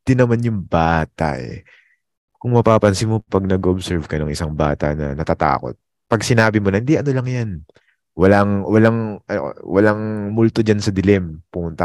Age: 20-39